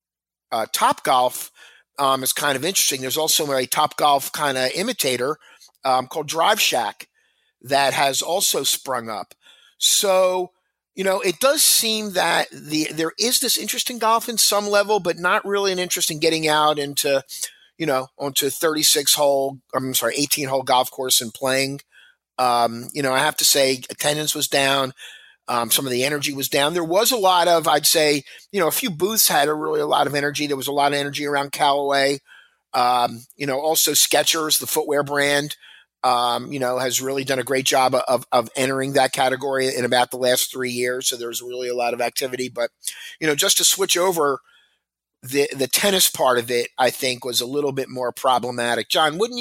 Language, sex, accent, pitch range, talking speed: English, male, American, 130-165 Hz, 200 wpm